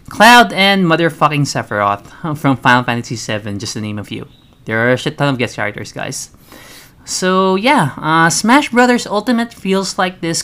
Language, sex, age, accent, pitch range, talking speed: Filipino, male, 20-39, native, 125-180 Hz, 180 wpm